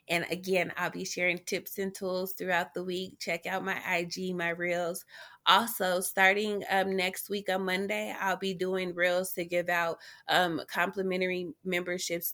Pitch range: 165-185 Hz